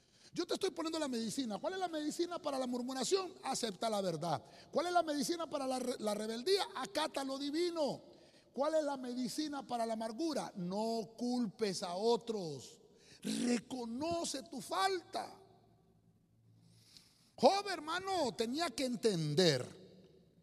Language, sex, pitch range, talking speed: Spanish, male, 200-310 Hz, 135 wpm